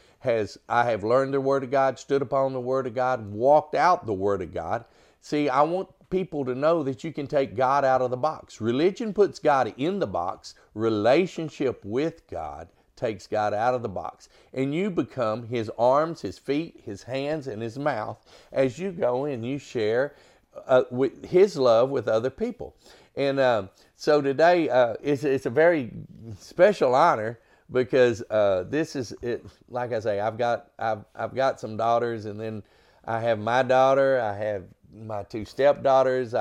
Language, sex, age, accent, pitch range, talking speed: English, male, 50-69, American, 115-150 Hz, 185 wpm